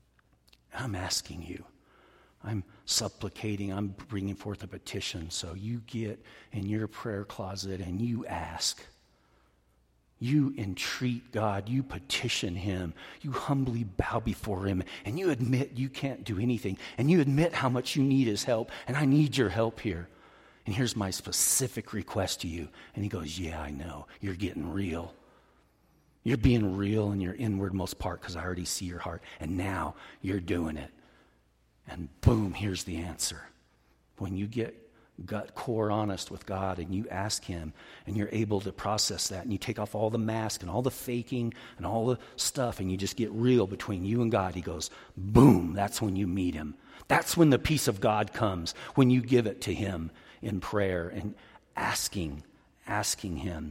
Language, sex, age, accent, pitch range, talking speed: English, male, 50-69, American, 90-115 Hz, 180 wpm